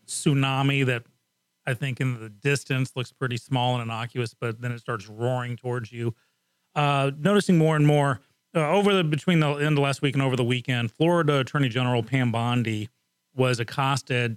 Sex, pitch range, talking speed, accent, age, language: male, 125-160 Hz, 185 wpm, American, 30-49, English